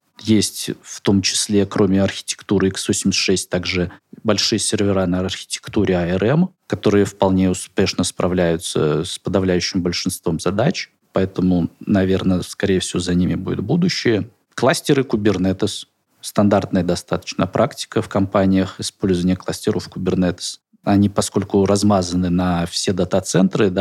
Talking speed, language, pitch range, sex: 115 wpm, Russian, 90-105 Hz, male